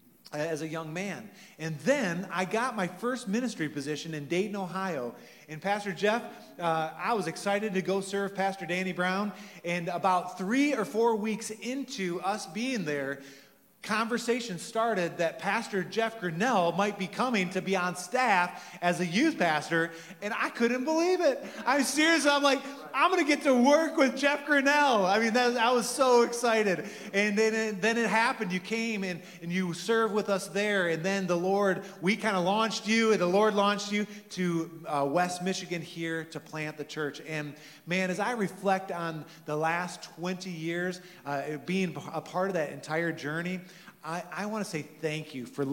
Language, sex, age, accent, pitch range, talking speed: English, male, 30-49, American, 165-210 Hz, 190 wpm